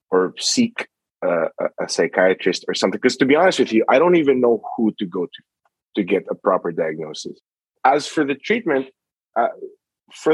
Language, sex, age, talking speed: English, male, 20-39, 185 wpm